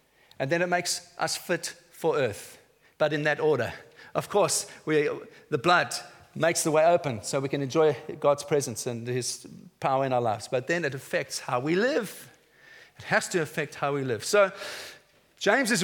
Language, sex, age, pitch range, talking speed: English, male, 40-59, 160-230 Hz, 185 wpm